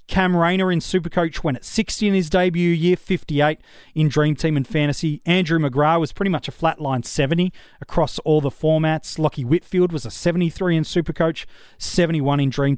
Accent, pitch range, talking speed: Australian, 140-175 Hz, 185 wpm